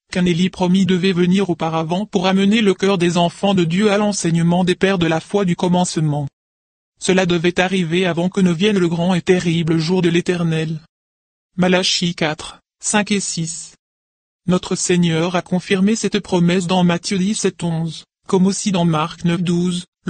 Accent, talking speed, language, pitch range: French, 165 wpm, English, 170-195 Hz